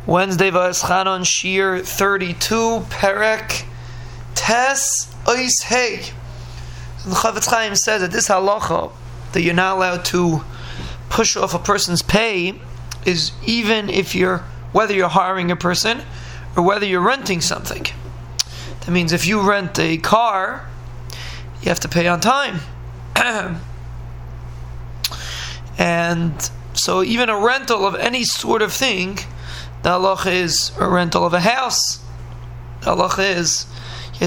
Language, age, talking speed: English, 20-39, 130 wpm